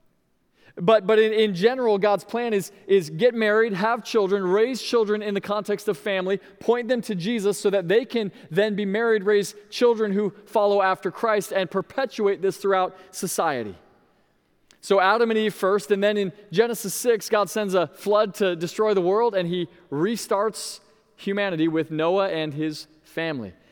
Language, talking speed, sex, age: English, 175 wpm, male, 20-39